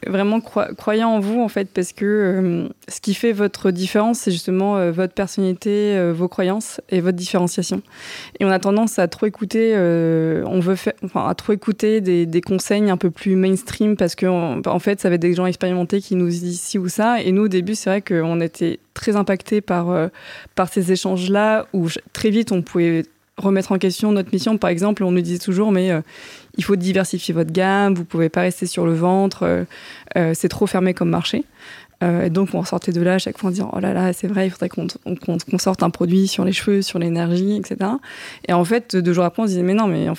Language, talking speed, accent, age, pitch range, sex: French, 245 wpm, French, 20-39, 180-205 Hz, female